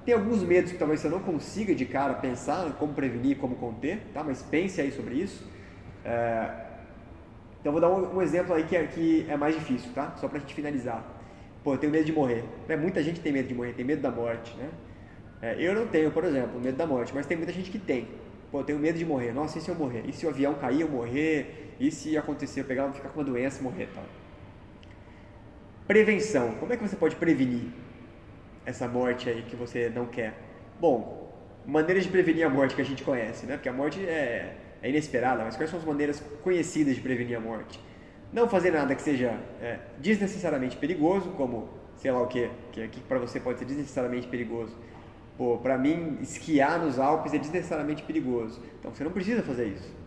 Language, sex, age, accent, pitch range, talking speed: Portuguese, male, 20-39, Brazilian, 115-160 Hz, 210 wpm